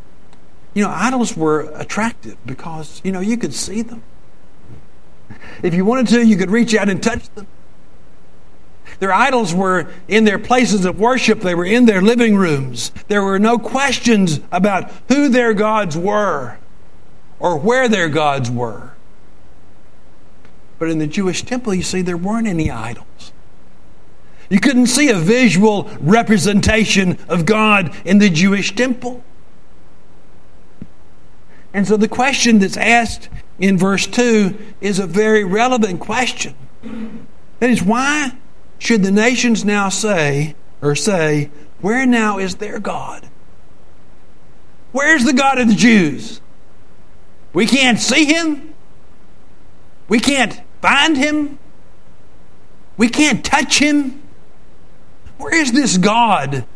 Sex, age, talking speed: male, 60-79, 130 wpm